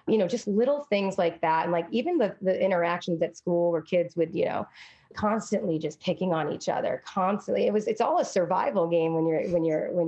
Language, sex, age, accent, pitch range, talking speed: English, female, 30-49, American, 170-195 Hz, 230 wpm